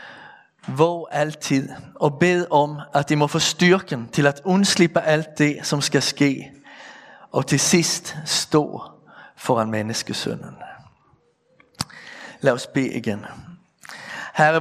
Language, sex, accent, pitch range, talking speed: Danish, male, Swedish, 135-160 Hz, 120 wpm